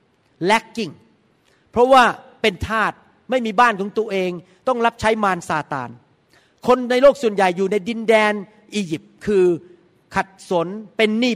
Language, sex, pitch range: Thai, male, 185-240 Hz